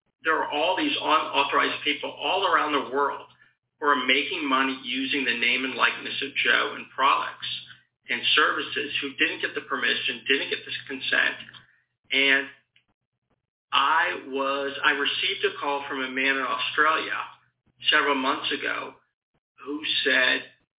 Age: 50-69